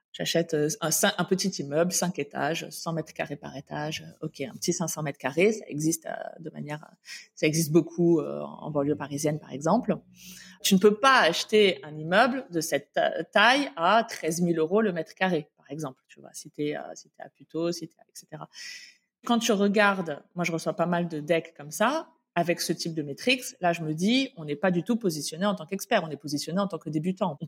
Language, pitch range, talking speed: French, 160-215 Hz, 215 wpm